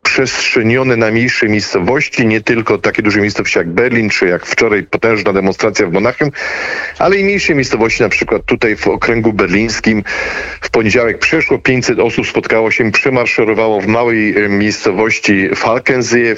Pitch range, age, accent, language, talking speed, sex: 110-135 Hz, 40-59, native, Polish, 145 wpm, male